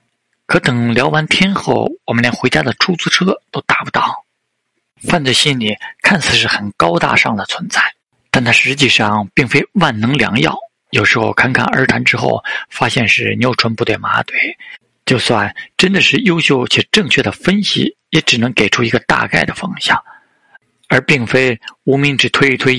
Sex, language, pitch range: male, Chinese, 115-150 Hz